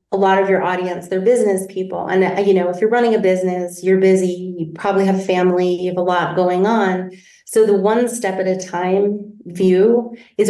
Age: 30-49